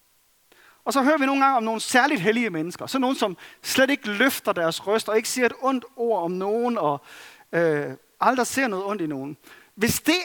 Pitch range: 175-260 Hz